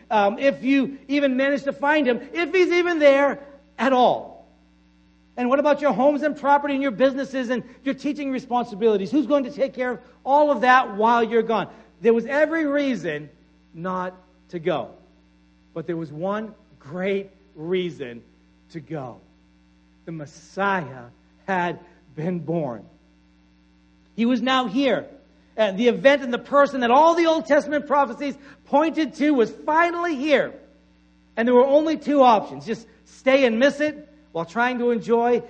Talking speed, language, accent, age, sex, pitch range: 160 wpm, English, American, 60-79, male, 165-270 Hz